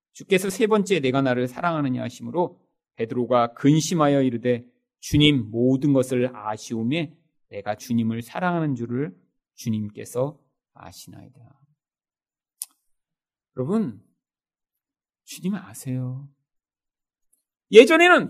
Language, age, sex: Korean, 40-59, male